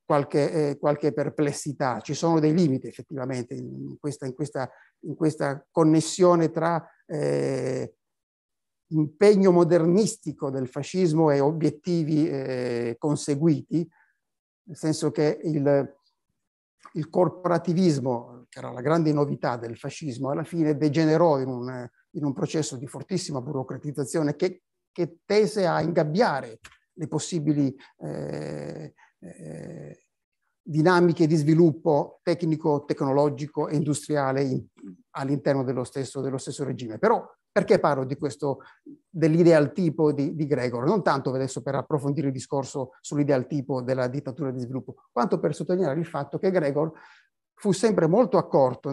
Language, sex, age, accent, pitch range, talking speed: Italian, male, 50-69, native, 140-165 Hz, 125 wpm